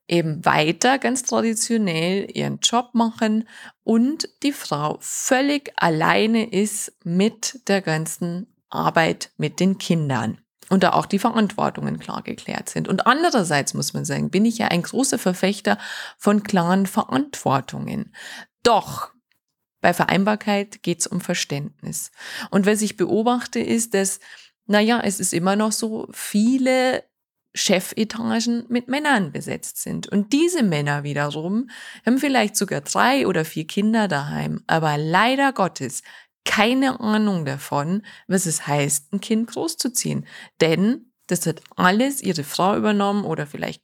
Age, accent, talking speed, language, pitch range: 20-39, German, 135 wpm, German, 180-230 Hz